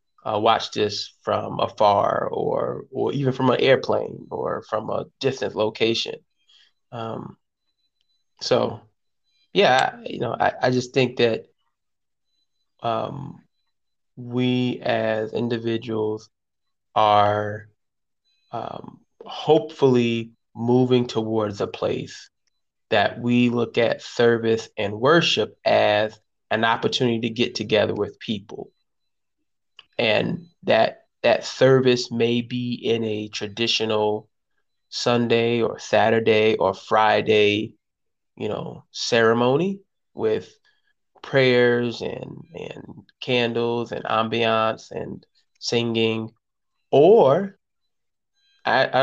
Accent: American